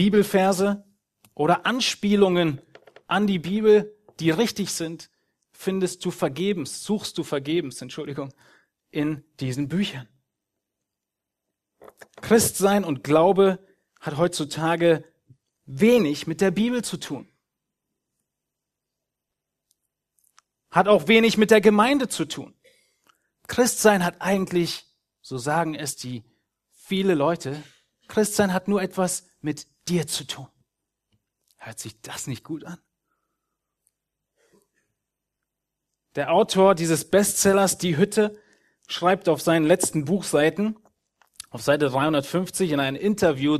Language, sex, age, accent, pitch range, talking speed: German, male, 30-49, German, 150-205 Hz, 105 wpm